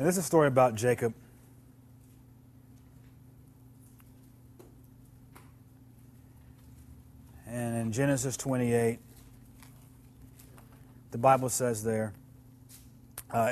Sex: male